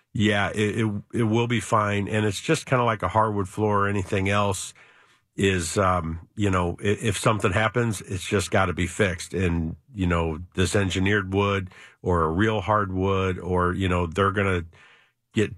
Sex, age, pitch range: male, 50-69, 90-100 Hz